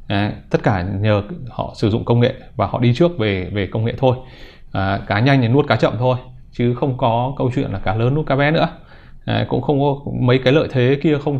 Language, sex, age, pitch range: Vietnamese, male, 20-39, 110-140 Hz